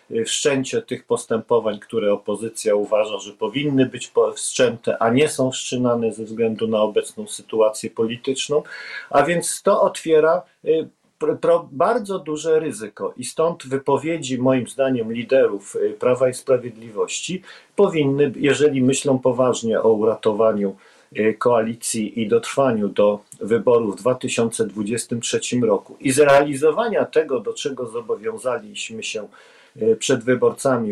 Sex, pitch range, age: male, 120-170 Hz, 50-69